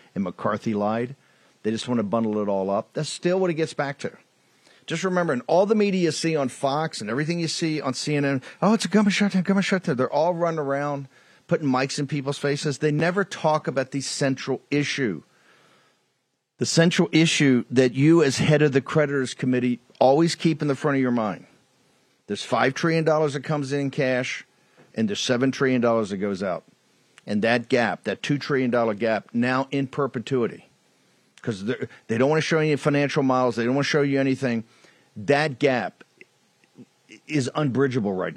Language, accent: English, American